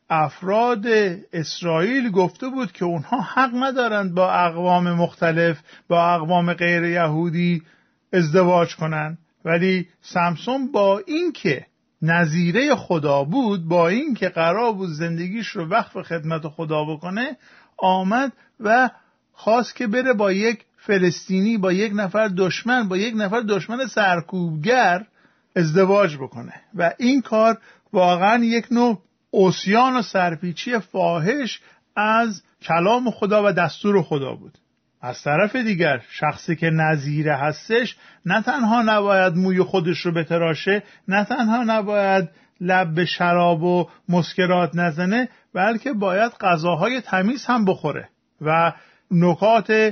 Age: 50-69